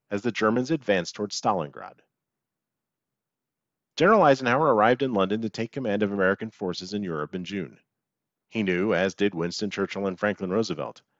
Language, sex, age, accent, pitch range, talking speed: English, male, 40-59, American, 95-125 Hz, 160 wpm